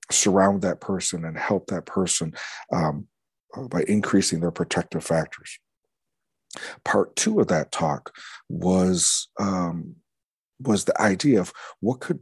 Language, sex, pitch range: English, male, 90-100 Hz